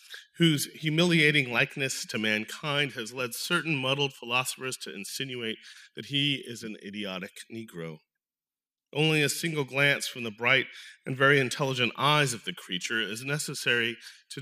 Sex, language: male, English